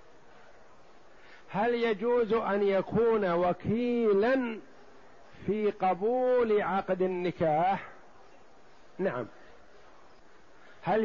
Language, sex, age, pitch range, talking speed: Arabic, male, 50-69, 175-215 Hz, 60 wpm